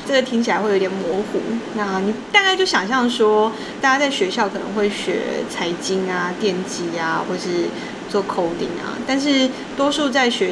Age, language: 20-39, Chinese